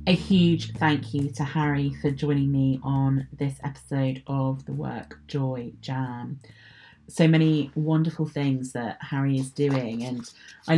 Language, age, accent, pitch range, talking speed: English, 30-49, British, 135-155 Hz, 150 wpm